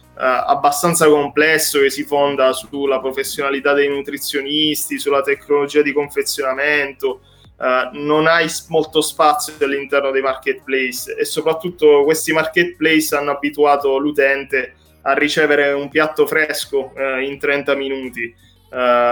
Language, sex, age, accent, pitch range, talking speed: Italian, male, 20-39, native, 130-150 Hz, 125 wpm